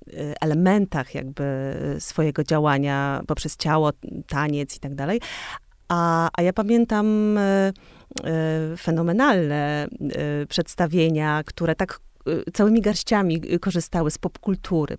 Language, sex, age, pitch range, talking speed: Polish, female, 30-49, 150-185 Hz, 90 wpm